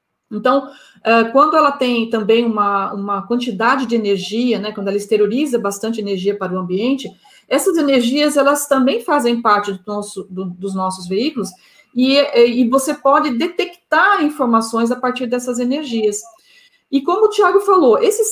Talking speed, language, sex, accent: 155 wpm, Portuguese, female, Brazilian